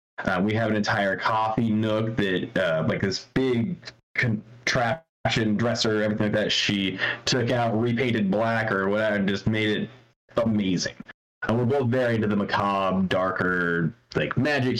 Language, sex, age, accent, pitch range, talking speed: English, male, 20-39, American, 100-125 Hz, 160 wpm